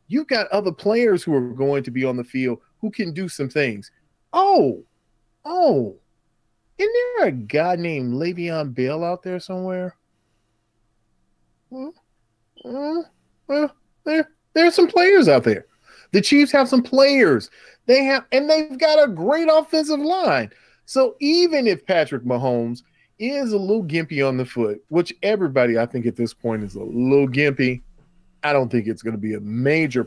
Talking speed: 170 wpm